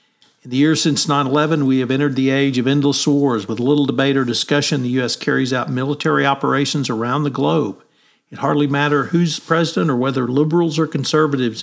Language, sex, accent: English, male, American